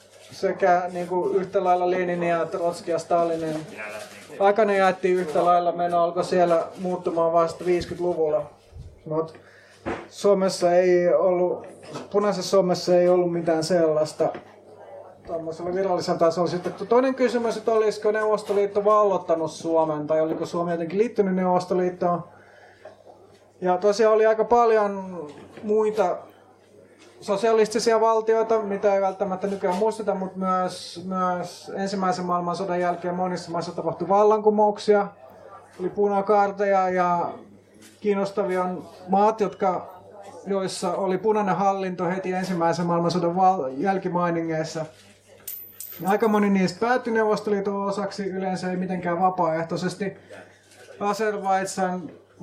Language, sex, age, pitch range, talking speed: Finnish, male, 30-49, 170-200 Hz, 105 wpm